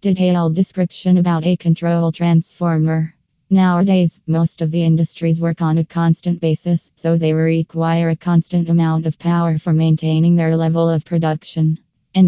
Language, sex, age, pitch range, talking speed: English, female, 20-39, 165-180 Hz, 150 wpm